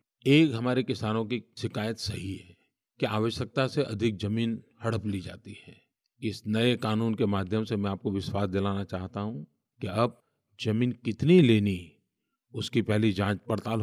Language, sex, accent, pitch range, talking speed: Hindi, male, native, 105-130 Hz, 160 wpm